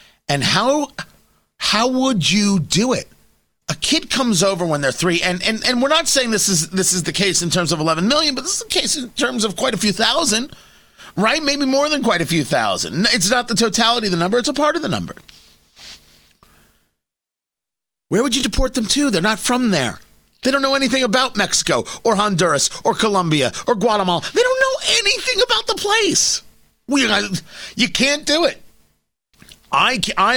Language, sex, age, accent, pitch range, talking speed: English, male, 30-49, American, 150-245 Hz, 200 wpm